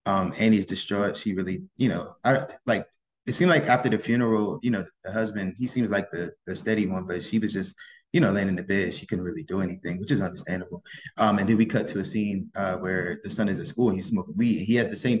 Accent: American